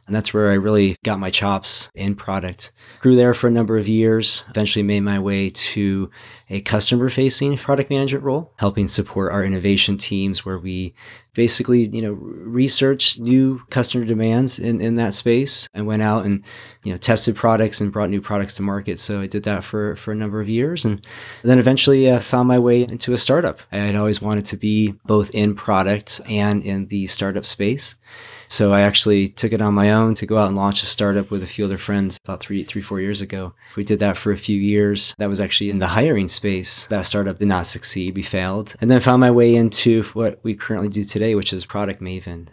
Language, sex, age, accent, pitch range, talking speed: English, male, 20-39, American, 100-115 Hz, 220 wpm